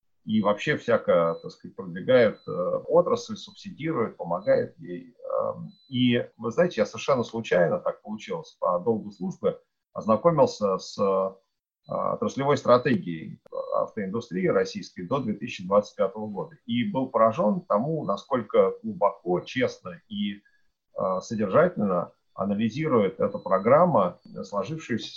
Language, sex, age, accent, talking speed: Russian, male, 40-59, native, 105 wpm